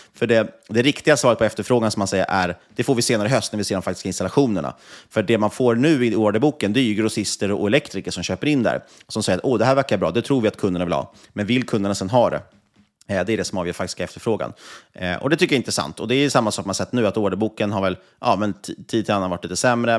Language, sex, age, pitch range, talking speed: Swedish, male, 30-49, 95-135 Hz, 285 wpm